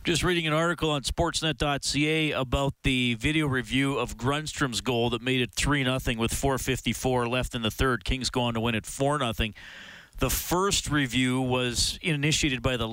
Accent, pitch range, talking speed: American, 105-130 Hz, 180 wpm